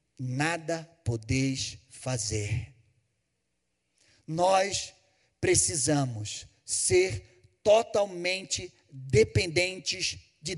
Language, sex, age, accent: Portuguese, male, 40-59, Brazilian